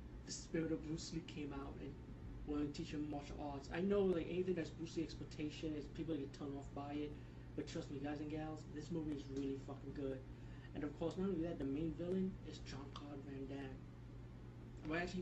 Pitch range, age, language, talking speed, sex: 135-155 Hz, 20-39, English, 235 wpm, male